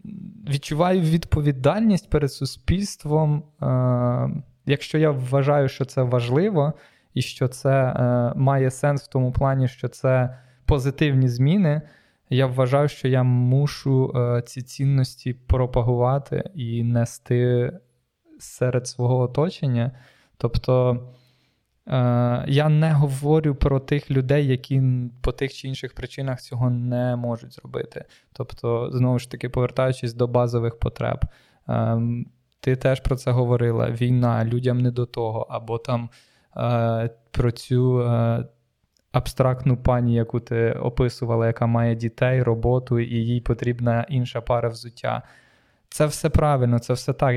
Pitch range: 120-140 Hz